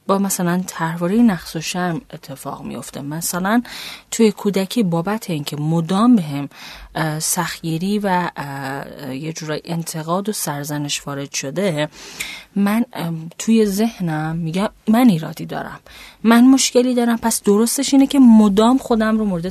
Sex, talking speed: female, 130 wpm